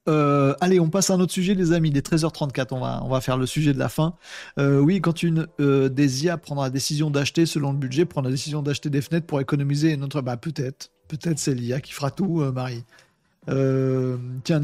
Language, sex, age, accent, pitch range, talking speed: French, male, 40-59, French, 130-155 Hz, 235 wpm